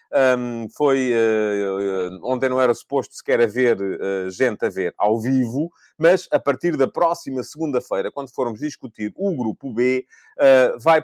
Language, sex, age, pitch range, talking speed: Portuguese, male, 30-49, 120-160 Hz, 160 wpm